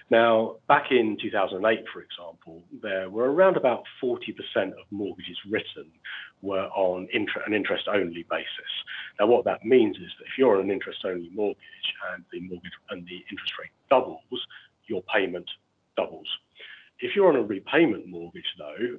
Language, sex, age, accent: English, male, 40-59, British